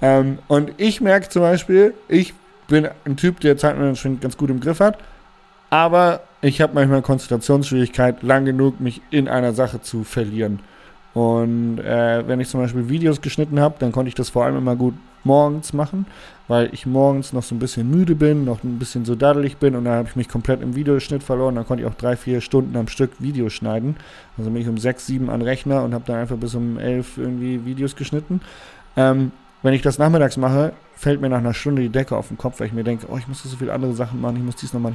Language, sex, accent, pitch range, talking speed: German, male, German, 120-140 Hz, 235 wpm